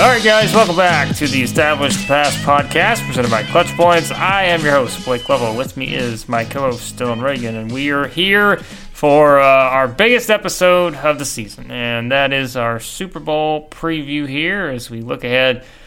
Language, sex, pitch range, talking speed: English, male, 130-160 Hz, 195 wpm